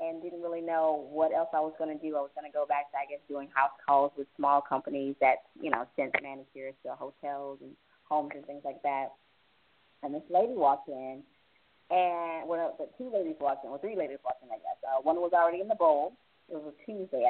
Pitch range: 145-220 Hz